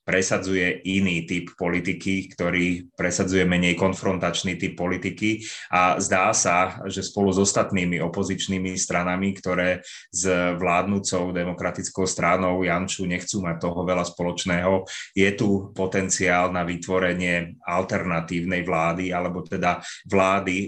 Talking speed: 120 wpm